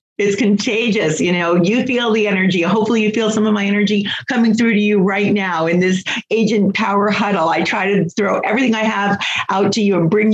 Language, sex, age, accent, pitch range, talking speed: English, female, 40-59, American, 185-225 Hz, 220 wpm